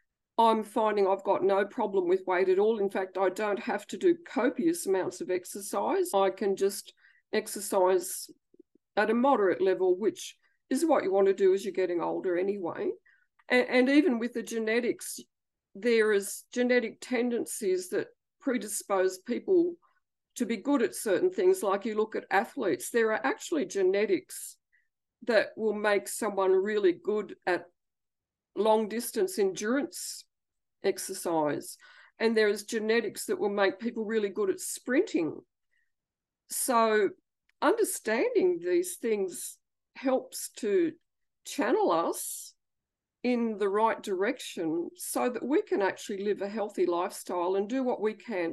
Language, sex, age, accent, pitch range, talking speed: English, female, 50-69, Australian, 195-310 Hz, 145 wpm